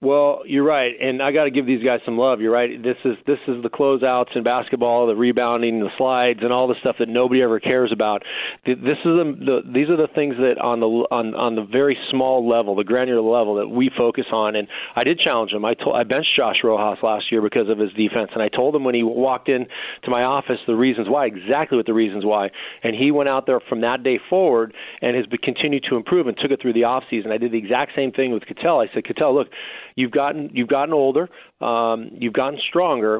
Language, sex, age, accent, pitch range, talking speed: English, male, 40-59, American, 115-140 Hz, 250 wpm